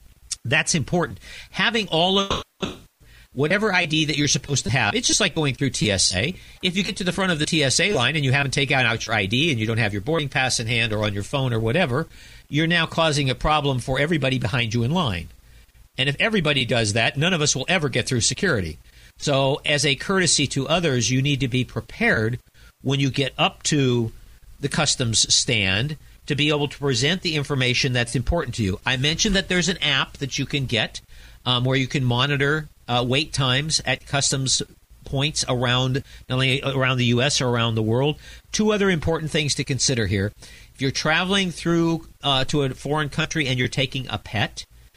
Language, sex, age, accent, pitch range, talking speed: English, male, 50-69, American, 120-155 Hz, 210 wpm